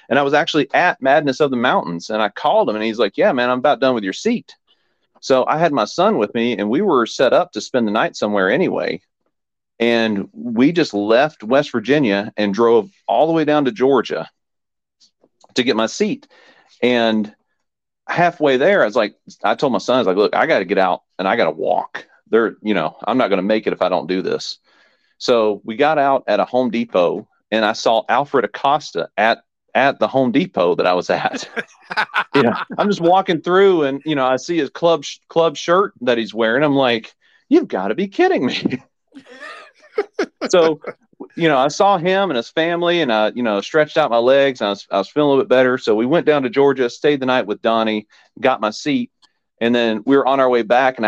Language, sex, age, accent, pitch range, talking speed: English, male, 40-59, American, 115-170 Hz, 230 wpm